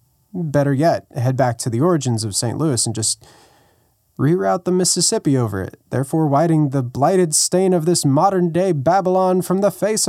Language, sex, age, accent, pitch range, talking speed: English, male, 20-39, American, 115-145 Hz, 170 wpm